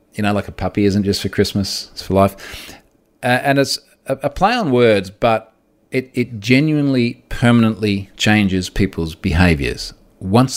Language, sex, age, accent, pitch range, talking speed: English, male, 40-59, Australian, 95-120 Hz, 165 wpm